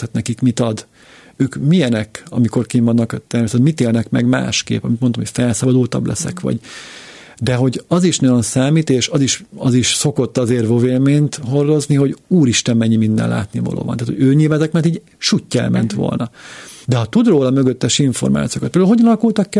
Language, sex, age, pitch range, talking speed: Hungarian, male, 50-69, 120-155 Hz, 180 wpm